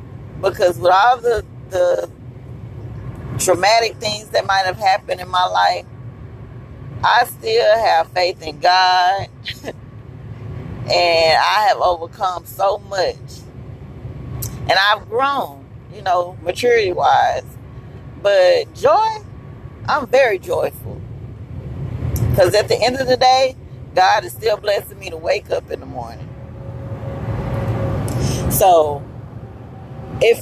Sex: female